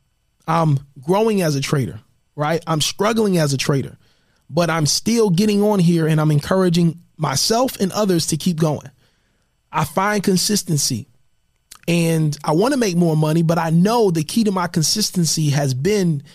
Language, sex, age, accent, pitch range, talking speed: English, male, 30-49, American, 155-210 Hz, 170 wpm